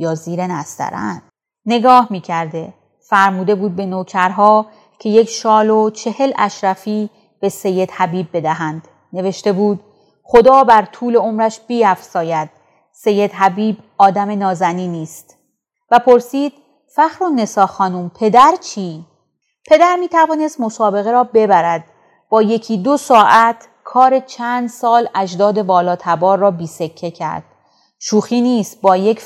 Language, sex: Persian, female